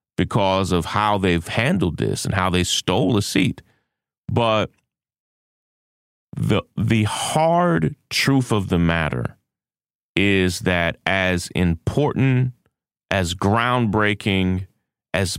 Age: 30-49